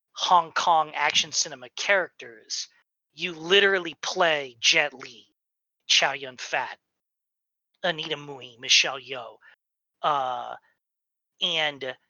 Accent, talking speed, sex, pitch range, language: American, 90 wpm, male, 150-205 Hz, English